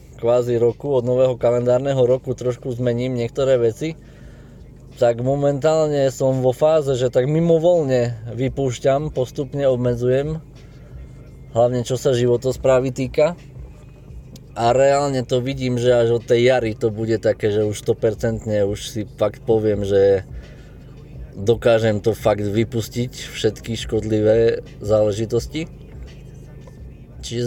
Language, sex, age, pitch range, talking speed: Slovak, male, 20-39, 115-140 Hz, 115 wpm